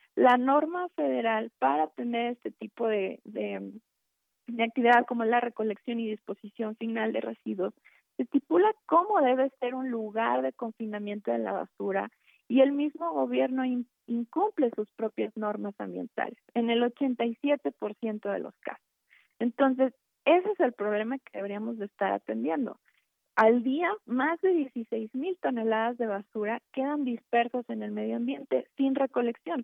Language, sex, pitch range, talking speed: Spanish, female, 210-260 Hz, 145 wpm